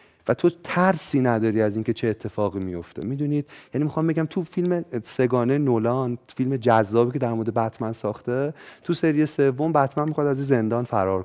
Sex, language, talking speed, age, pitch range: male, Persian, 175 wpm, 30-49, 115-150 Hz